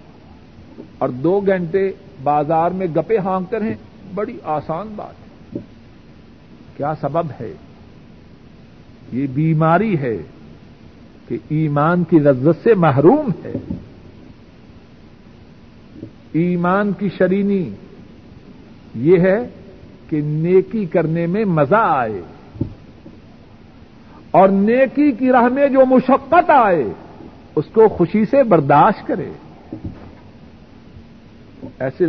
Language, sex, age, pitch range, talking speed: Urdu, male, 60-79, 155-220 Hz, 95 wpm